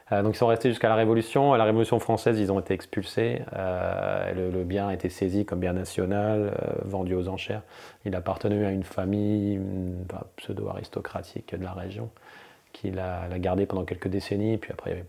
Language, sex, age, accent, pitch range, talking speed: French, male, 30-49, French, 90-105 Hz, 205 wpm